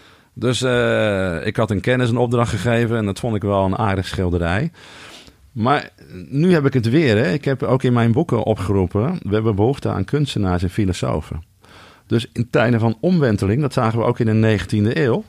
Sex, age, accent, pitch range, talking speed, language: male, 50-69, Dutch, 100-130 Hz, 200 wpm, Dutch